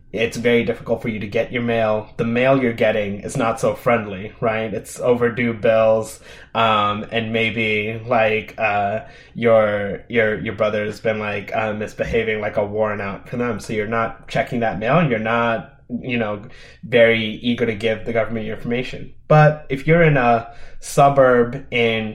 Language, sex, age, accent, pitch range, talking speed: English, male, 20-39, American, 110-130 Hz, 180 wpm